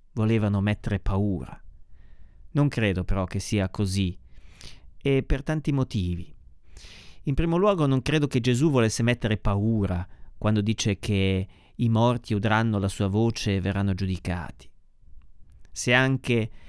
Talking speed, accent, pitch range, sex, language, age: 135 wpm, native, 100-135 Hz, male, Italian, 40-59